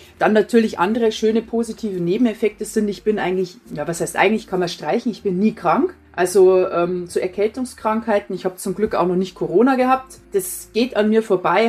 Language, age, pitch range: German, 30-49, 180-225 Hz